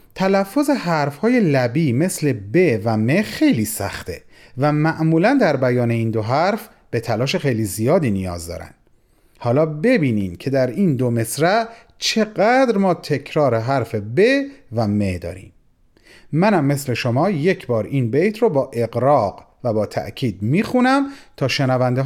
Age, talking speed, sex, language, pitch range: 40-59, 145 wpm, male, Persian, 115-155 Hz